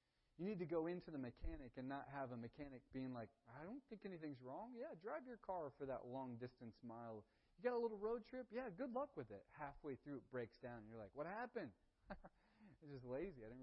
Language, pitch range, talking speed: English, 110-145 Hz, 240 wpm